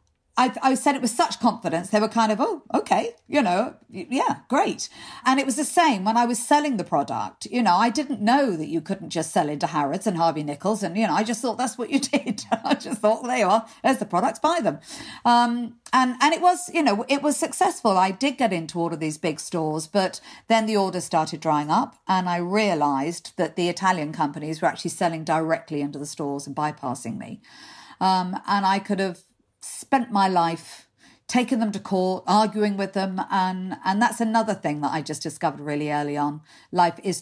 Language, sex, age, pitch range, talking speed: English, female, 50-69, 165-245 Hz, 220 wpm